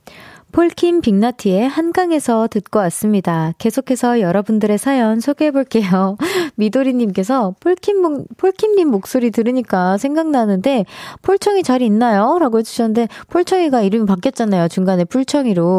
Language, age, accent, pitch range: Korean, 20-39, native, 200-290 Hz